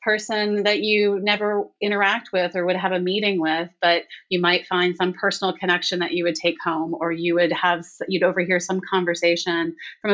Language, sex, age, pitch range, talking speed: English, female, 30-49, 165-200 Hz, 195 wpm